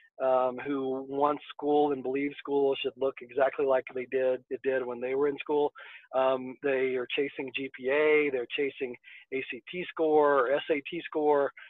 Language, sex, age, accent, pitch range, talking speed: English, male, 40-59, American, 130-155 Hz, 165 wpm